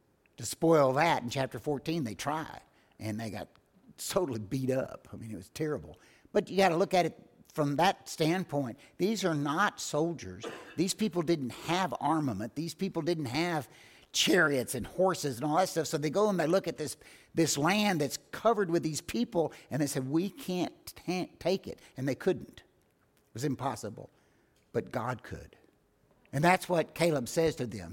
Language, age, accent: English, 60-79, American